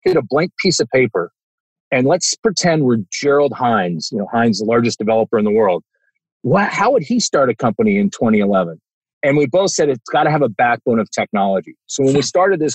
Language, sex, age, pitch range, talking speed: English, male, 50-69, 125-180 Hz, 215 wpm